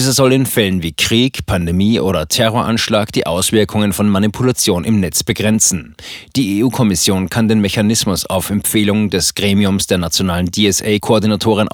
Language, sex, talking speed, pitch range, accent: German, male, 145 wpm, 100-120 Hz, German